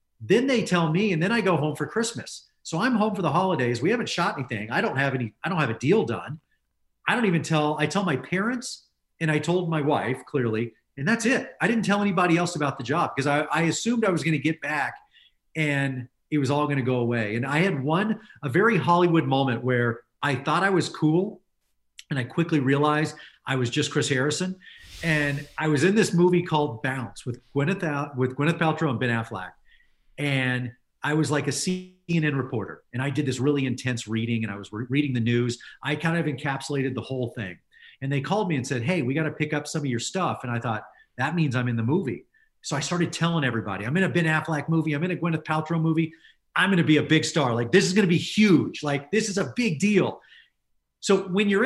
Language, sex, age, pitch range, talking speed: English, male, 40-59, 130-180 Hz, 235 wpm